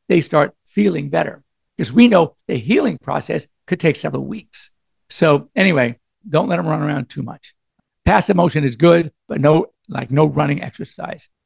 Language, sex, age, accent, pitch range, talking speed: English, male, 60-79, American, 135-180 Hz, 175 wpm